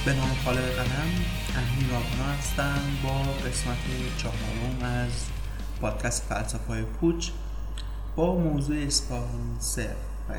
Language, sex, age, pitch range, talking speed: Persian, male, 20-39, 105-125 Hz, 110 wpm